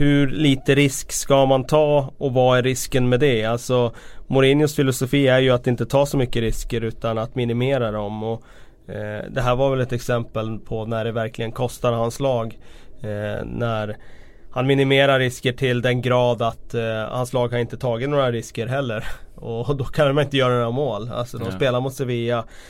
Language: Swedish